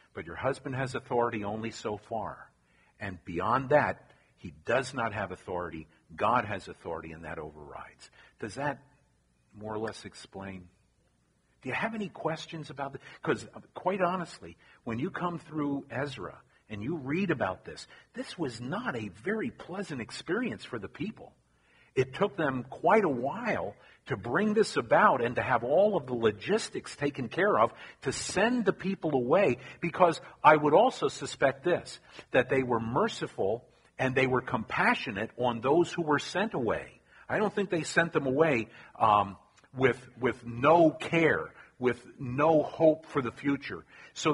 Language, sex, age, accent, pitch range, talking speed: Italian, male, 50-69, American, 120-165 Hz, 165 wpm